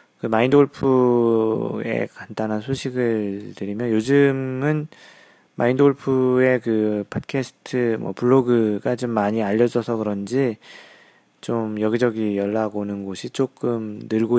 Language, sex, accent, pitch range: Korean, male, native, 105-130 Hz